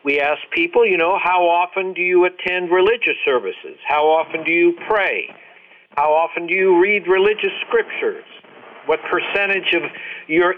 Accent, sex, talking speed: American, male, 160 wpm